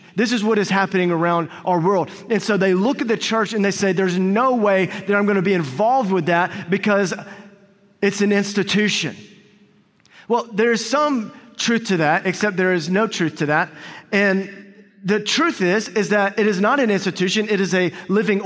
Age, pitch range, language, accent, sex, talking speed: 30-49, 185-220 Hz, English, American, male, 200 wpm